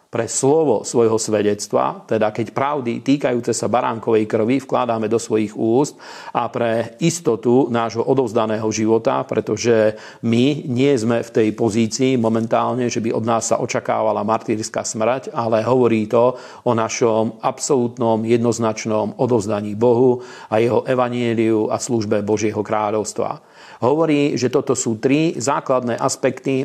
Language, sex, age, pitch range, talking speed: Slovak, male, 40-59, 110-125 Hz, 135 wpm